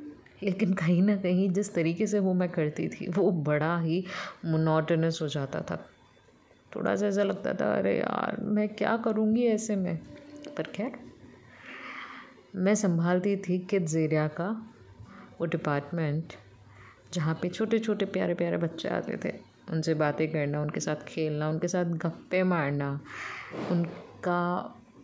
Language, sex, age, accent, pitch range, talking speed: English, female, 20-39, Indian, 150-185 Hz, 135 wpm